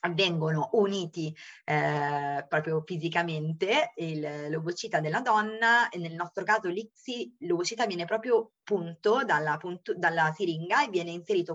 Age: 20-39